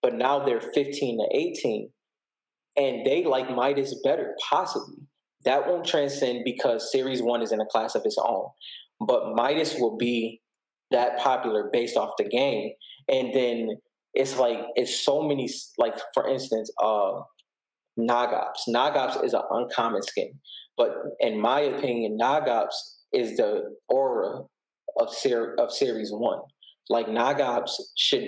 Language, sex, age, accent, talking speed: English, male, 20-39, American, 145 wpm